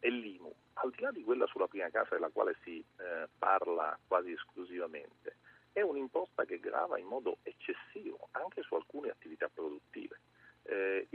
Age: 40-59